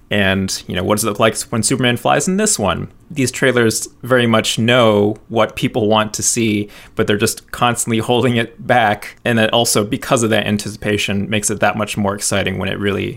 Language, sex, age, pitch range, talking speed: English, male, 20-39, 100-120 Hz, 215 wpm